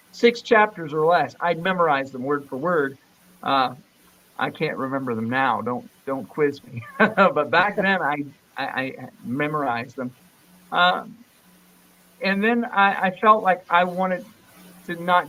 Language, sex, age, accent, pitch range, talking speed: English, male, 50-69, American, 145-190 Hz, 150 wpm